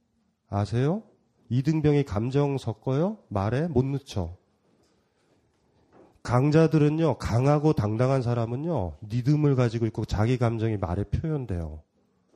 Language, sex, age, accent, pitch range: Korean, male, 30-49, native, 115-185 Hz